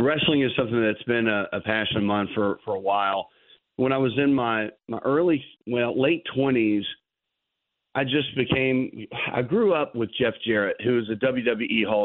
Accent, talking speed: American, 190 wpm